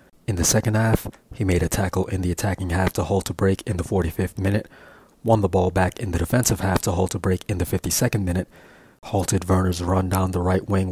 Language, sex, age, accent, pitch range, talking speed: English, male, 30-49, American, 90-105 Hz, 235 wpm